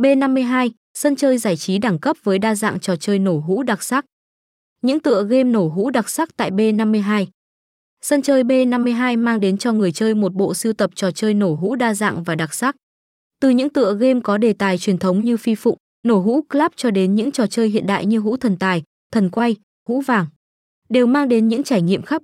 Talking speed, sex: 225 wpm, female